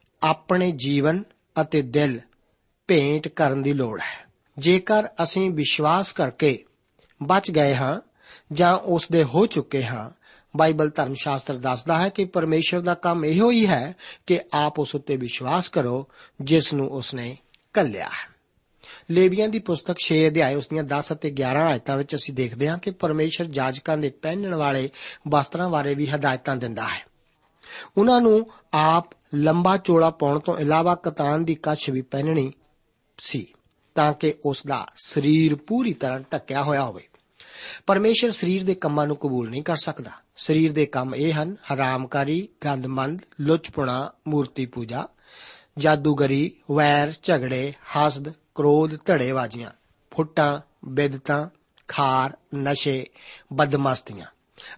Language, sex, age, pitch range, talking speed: Punjabi, male, 50-69, 140-165 Hz, 100 wpm